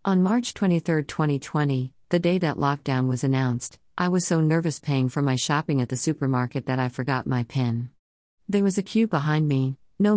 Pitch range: 130-165 Hz